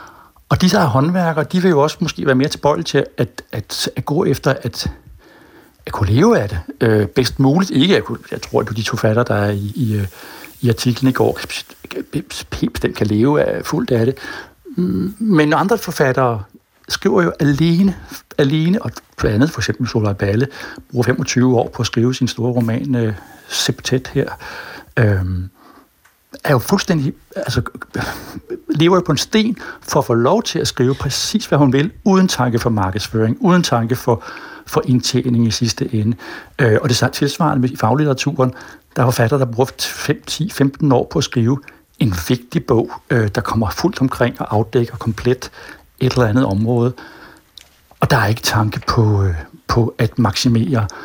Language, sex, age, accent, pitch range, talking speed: Danish, male, 60-79, native, 115-145 Hz, 175 wpm